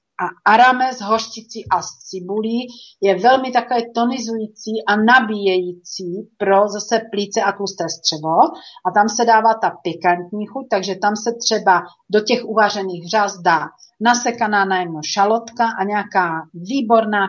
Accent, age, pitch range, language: native, 40-59, 180-230 Hz, Czech